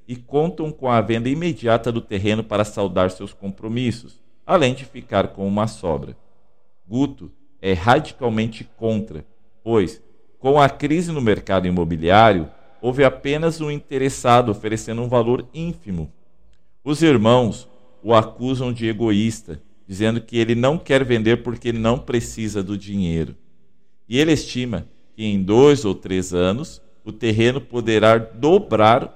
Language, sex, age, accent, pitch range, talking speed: Portuguese, male, 50-69, Brazilian, 100-125 Hz, 140 wpm